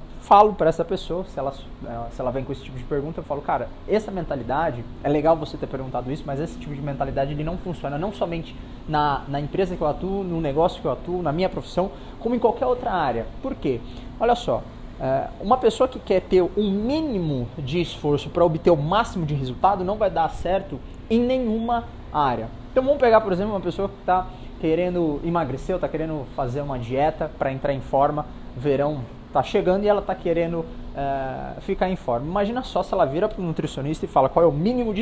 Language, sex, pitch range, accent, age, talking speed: Portuguese, male, 140-185 Hz, Brazilian, 20-39, 215 wpm